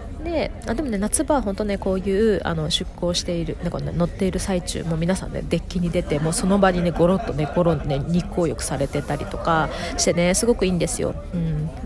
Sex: female